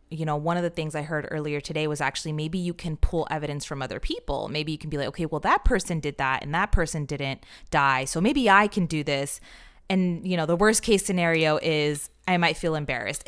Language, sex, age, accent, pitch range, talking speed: English, female, 20-39, American, 150-185 Hz, 245 wpm